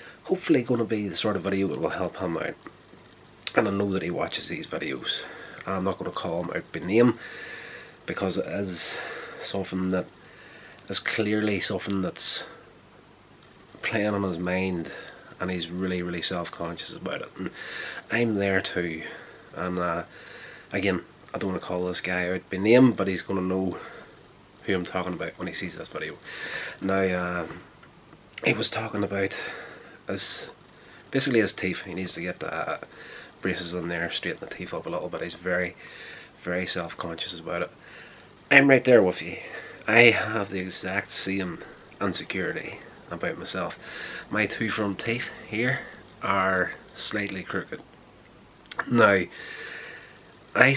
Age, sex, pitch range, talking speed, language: 30-49, male, 90-105 Hz, 160 wpm, English